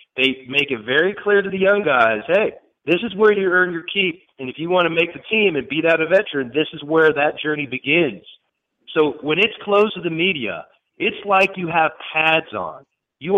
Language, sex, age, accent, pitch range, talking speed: English, male, 40-59, American, 140-175 Hz, 225 wpm